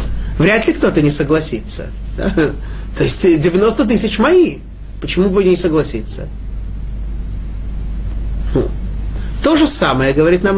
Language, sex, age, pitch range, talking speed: Russian, male, 30-49, 155-205 Hz, 110 wpm